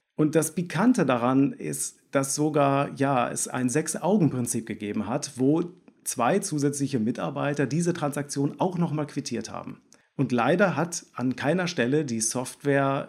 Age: 40-59